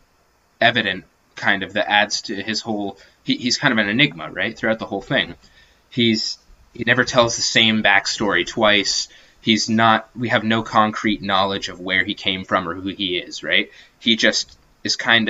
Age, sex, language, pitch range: 20-39, male, English, 95-115 Hz